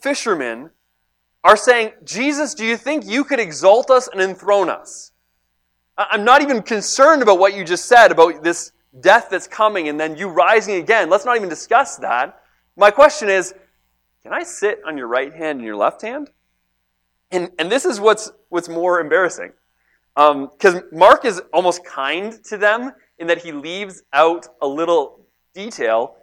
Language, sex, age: English, male, 30-49